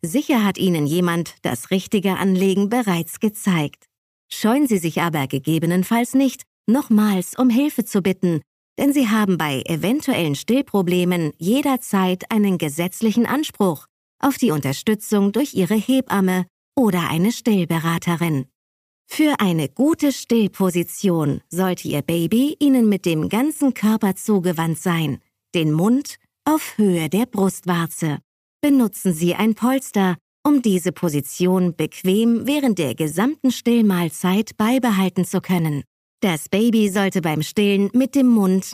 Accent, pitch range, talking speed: German, 170-235 Hz, 125 wpm